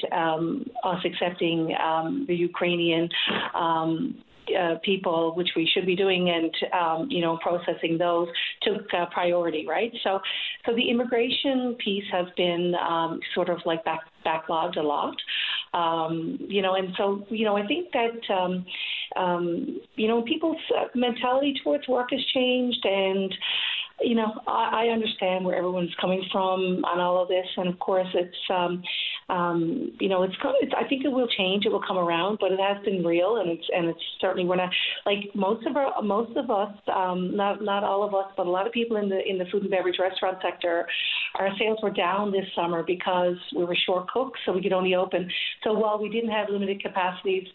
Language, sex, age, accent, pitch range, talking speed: English, female, 40-59, American, 175-210 Hz, 195 wpm